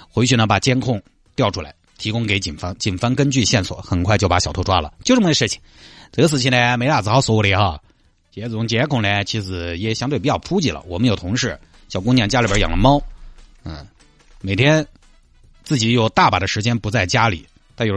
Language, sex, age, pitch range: Chinese, male, 30-49, 90-130 Hz